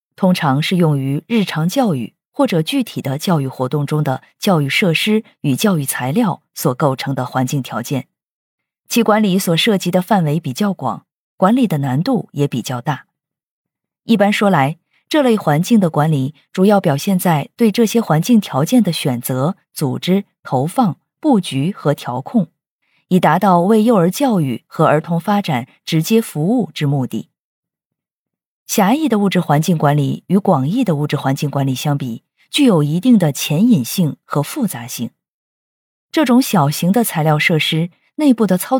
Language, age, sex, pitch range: Chinese, 20-39, female, 145-215 Hz